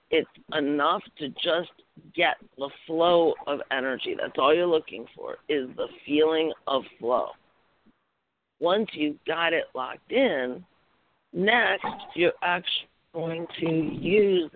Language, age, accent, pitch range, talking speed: English, 50-69, American, 170-220 Hz, 130 wpm